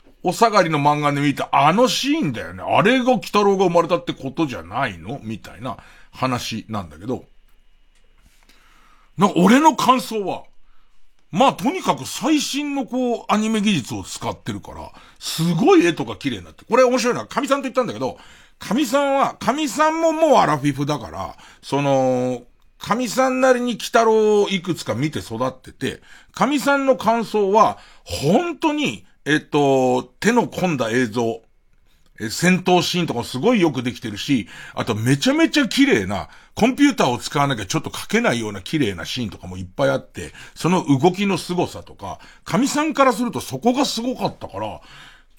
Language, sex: Japanese, male